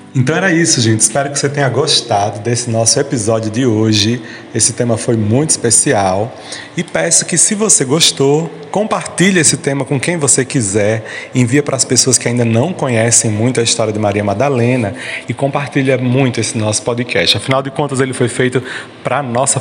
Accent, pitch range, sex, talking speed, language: Brazilian, 115-155 Hz, male, 185 wpm, Portuguese